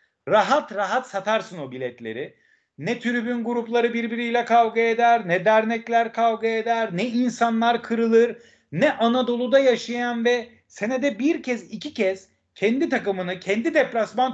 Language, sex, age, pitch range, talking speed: Turkish, male, 40-59, 200-260 Hz, 130 wpm